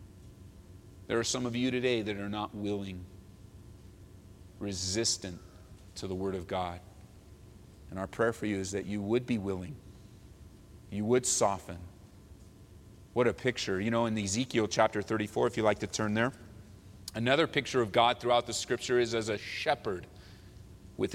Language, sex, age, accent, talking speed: English, male, 30-49, American, 160 wpm